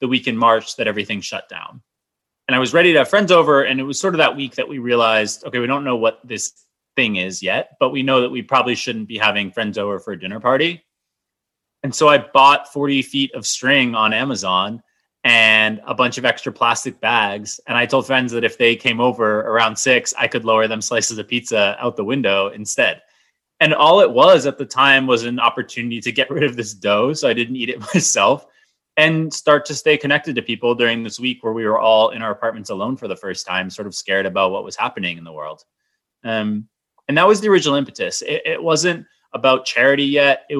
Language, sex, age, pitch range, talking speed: English, male, 20-39, 110-135 Hz, 230 wpm